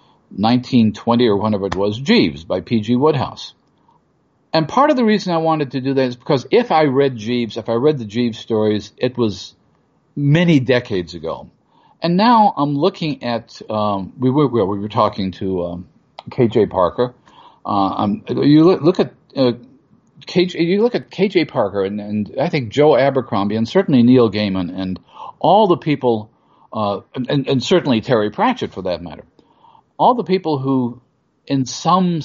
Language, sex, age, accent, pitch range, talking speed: English, male, 50-69, American, 115-165 Hz, 175 wpm